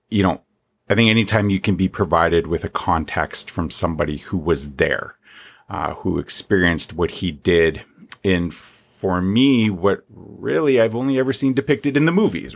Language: English